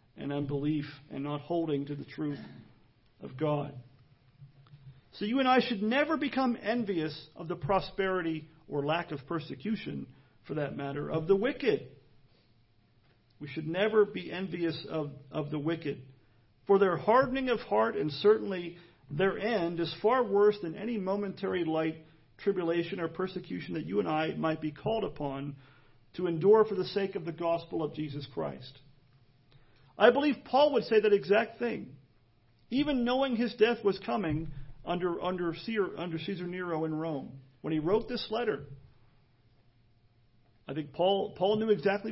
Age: 40-59